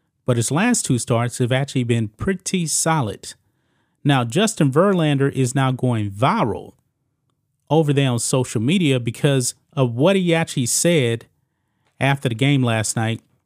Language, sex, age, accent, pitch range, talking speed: English, male, 30-49, American, 120-155 Hz, 145 wpm